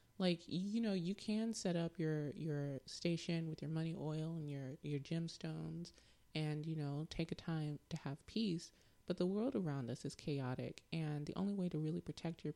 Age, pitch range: 20-39, 150-175 Hz